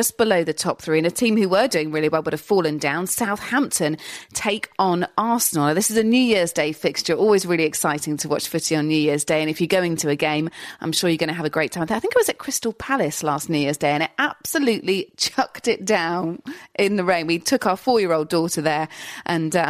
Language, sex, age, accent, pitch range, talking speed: English, female, 30-49, British, 155-220 Hz, 250 wpm